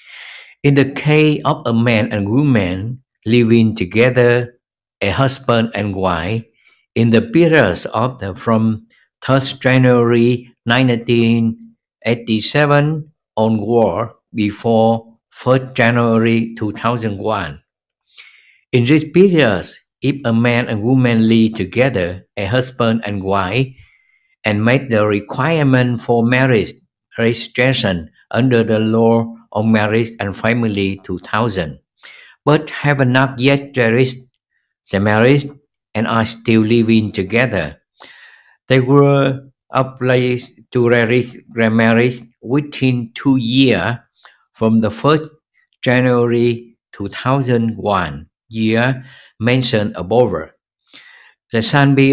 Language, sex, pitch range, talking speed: Vietnamese, male, 110-130 Hz, 100 wpm